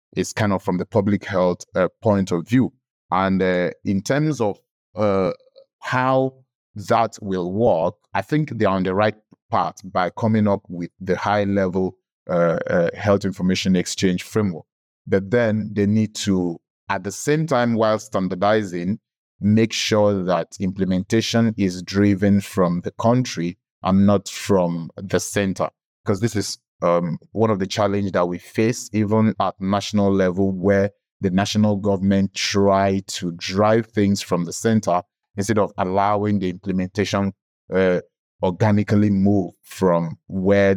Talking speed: 150 wpm